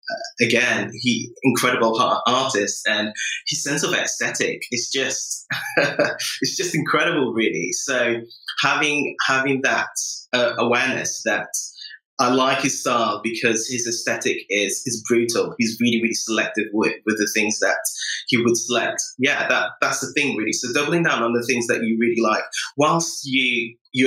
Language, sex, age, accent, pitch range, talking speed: English, male, 20-39, British, 115-135 Hz, 160 wpm